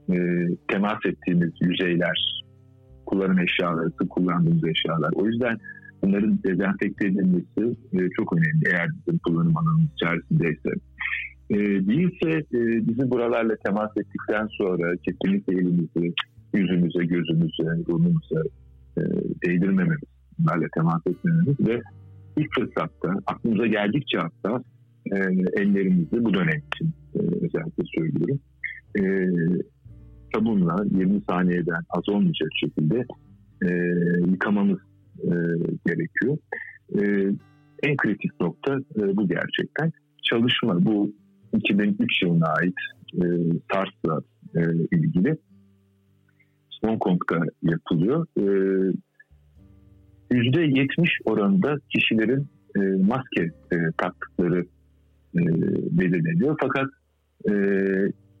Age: 50-69